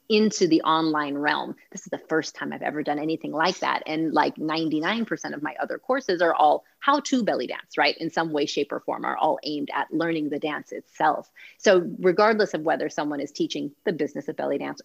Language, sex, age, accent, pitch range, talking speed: English, female, 30-49, American, 155-195 Hz, 220 wpm